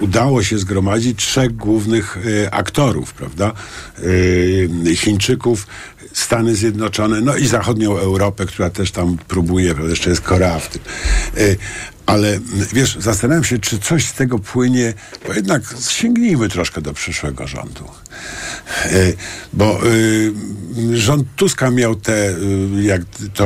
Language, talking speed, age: Polish, 115 wpm, 50-69